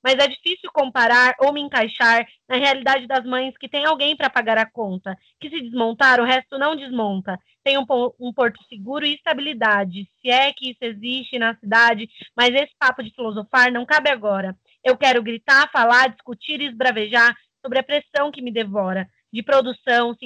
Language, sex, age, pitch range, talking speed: Portuguese, female, 20-39, 230-280 Hz, 190 wpm